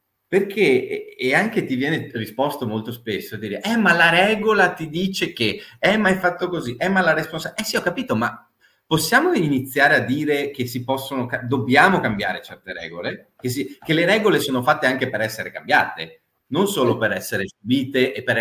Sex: male